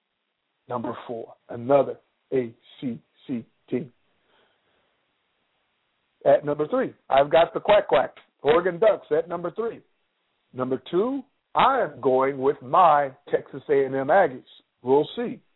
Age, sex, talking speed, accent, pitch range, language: 50-69, male, 115 wpm, American, 130-175 Hz, English